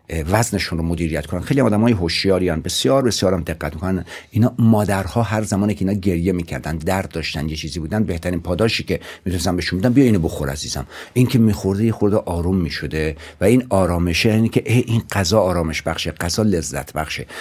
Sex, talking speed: male, 185 wpm